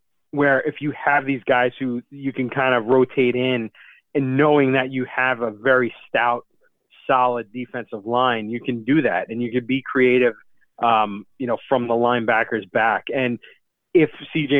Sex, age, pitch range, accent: male, 30-49, 120-135 Hz, American